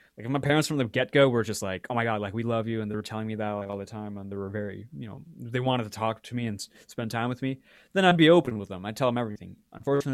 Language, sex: English, male